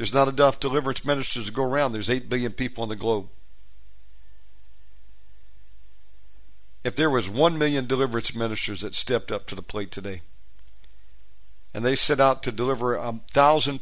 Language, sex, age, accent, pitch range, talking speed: English, male, 60-79, American, 100-130 Hz, 160 wpm